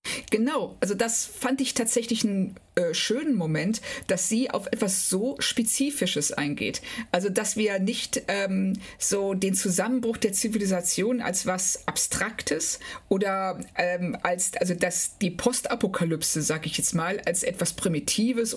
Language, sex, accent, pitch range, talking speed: German, female, German, 180-230 Hz, 140 wpm